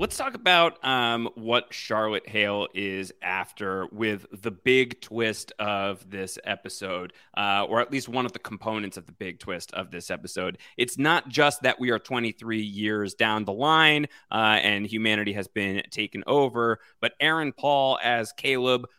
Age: 30-49